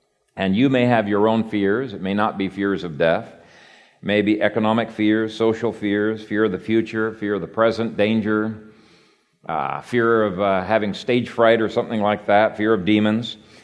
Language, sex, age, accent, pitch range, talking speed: English, male, 50-69, American, 95-120 Hz, 195 wpm